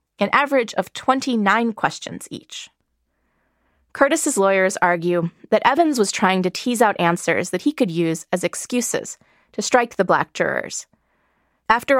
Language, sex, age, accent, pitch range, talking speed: English, female, 20-39, American, 175-245 Hz, 145 wpm